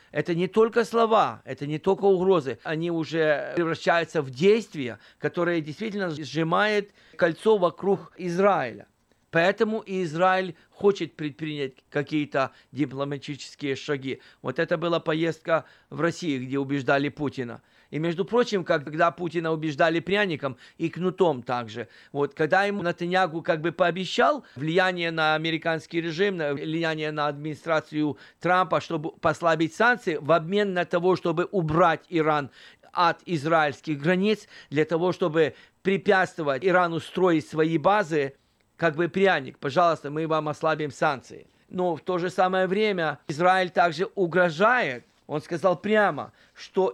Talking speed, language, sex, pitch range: 130 wpm, Russian, male, 155-190 Hz